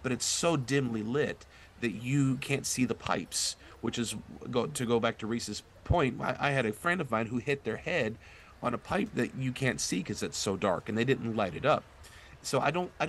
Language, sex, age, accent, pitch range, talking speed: English, male, 40-59, American, 105-140 Hz, 230 wpm